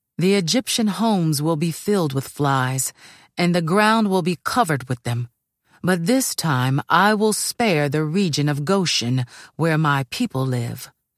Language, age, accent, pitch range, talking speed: English, 40-59, American, 140-200 Hz, 160 wpm